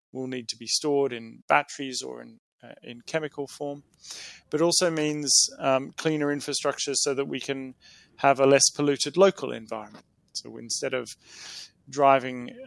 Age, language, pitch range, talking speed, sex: 30-49, English, 130-150 Hz, 155 wpm, male